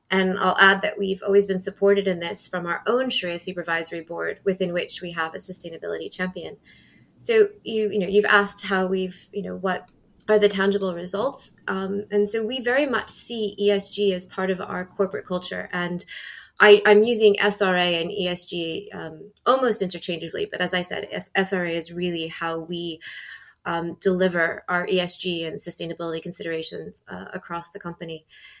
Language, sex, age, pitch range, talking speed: English, female, 20-39, 175-210 Hz, 170 wpm